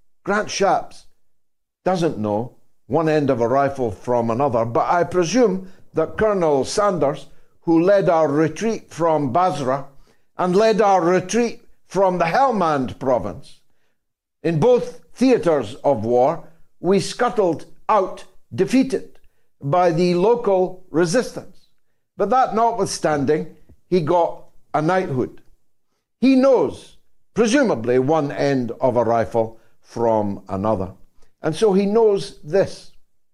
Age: 60-79